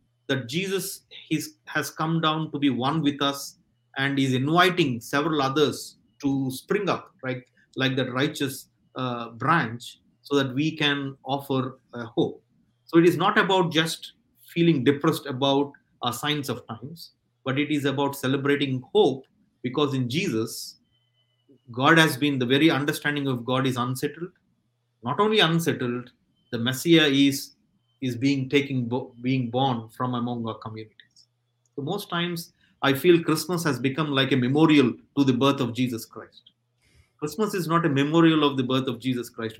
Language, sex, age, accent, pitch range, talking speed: English, male, 30-49, Indian, 125-155 Hz, 160 wpm